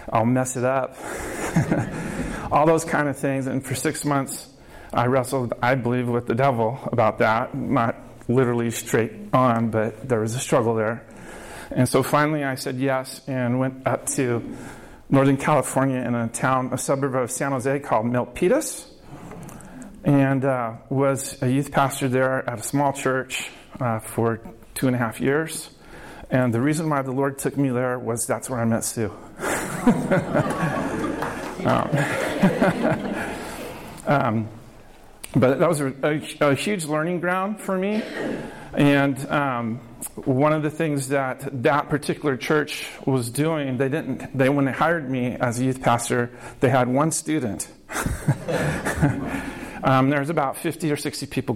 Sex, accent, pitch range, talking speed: male, American, 120-140 Hz, 155 wpm